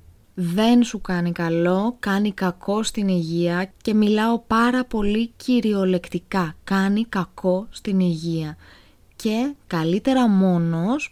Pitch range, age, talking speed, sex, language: 170-220 Hz, 20-39, 110 wpm, female, Greek